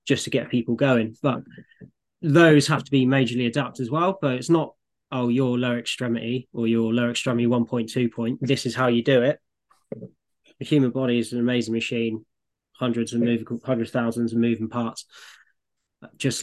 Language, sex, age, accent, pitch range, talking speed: English, male, 20-39, British, 120-135 Hz, 185 wpm